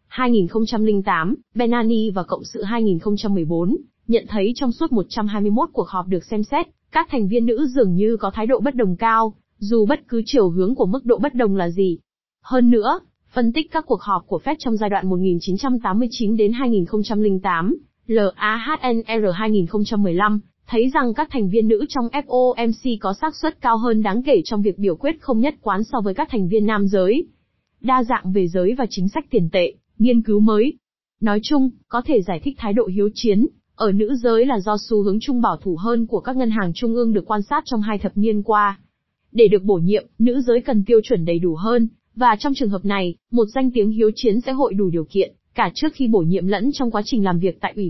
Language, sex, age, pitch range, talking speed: Vietnamese, female, 20-39, 200-245 Hz, 215 wpm